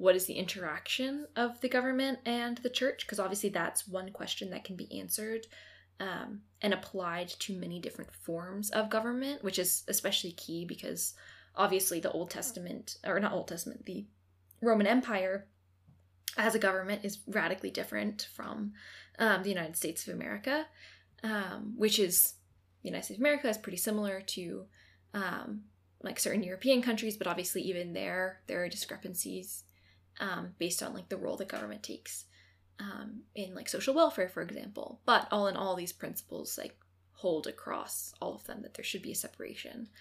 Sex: female